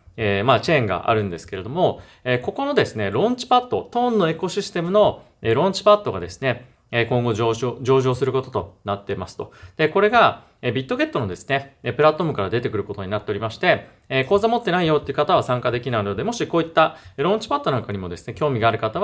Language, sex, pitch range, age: Japanese, male, 110-165 Hz, 30-49